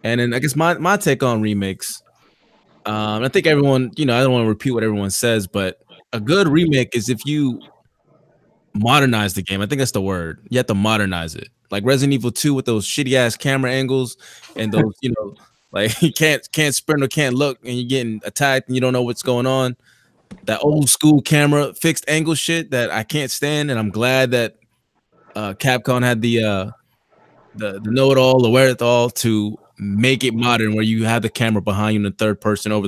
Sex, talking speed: male, 210 wpm